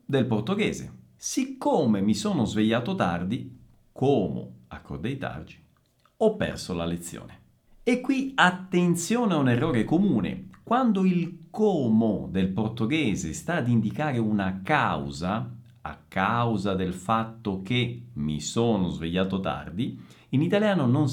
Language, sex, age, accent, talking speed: Italian, male, 50-69, native, 120 wpm